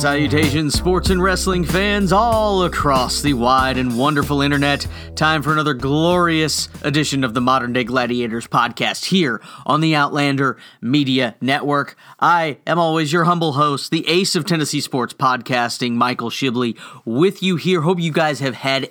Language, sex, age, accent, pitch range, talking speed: English, male, 30-49, American, 130-160 Hz, 160 wpm